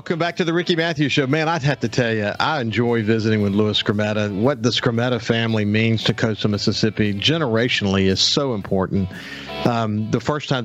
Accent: American